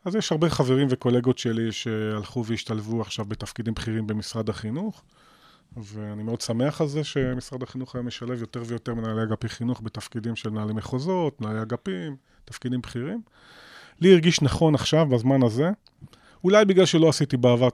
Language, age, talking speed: Hebrew, 30-49, 150 wpm